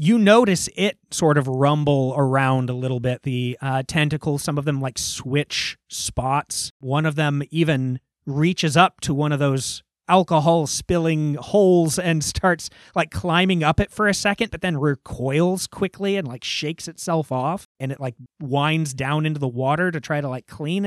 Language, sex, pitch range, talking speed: English, male, 135-170 Hz, 180 wpm